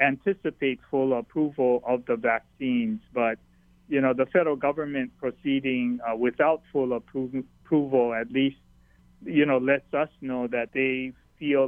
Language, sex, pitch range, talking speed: English, male, 115-145 Hz, 140 wpm